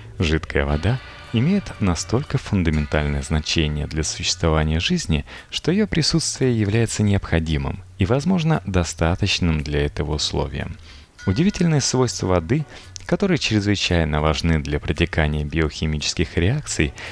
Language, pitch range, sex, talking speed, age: Russian, 80-115 Hz, male, 105 wpm, 30-49